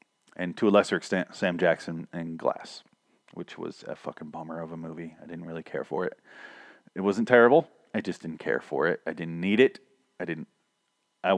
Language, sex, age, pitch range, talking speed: English, male, 30-49, 90-135 Hz, 205 wpm